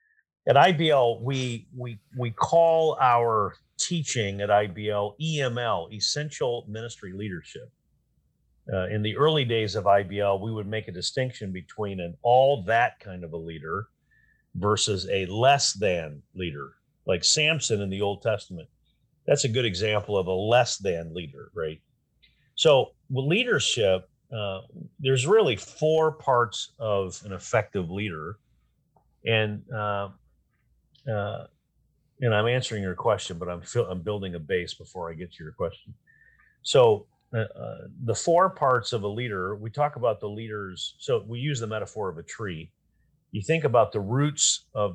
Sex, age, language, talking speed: male, 50-69, English, 155 wpm